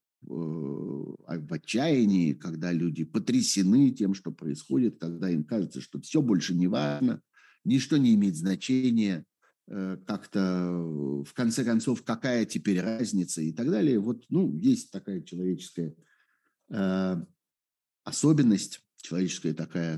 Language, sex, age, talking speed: Russian, male, 50-69, 115 wpm